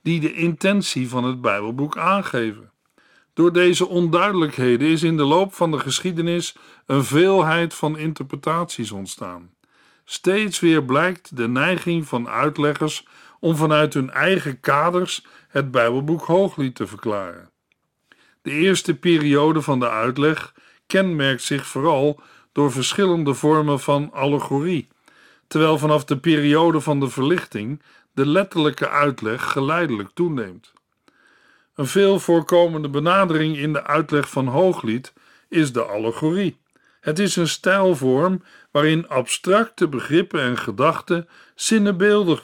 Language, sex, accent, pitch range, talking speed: Dutch, male, Dutch, 135-175 Hz, 125 wpm